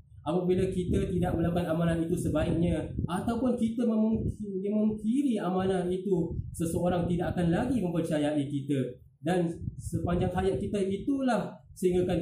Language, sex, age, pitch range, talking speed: Malay, male, 20-39, 140-185 Hz, 120 wpm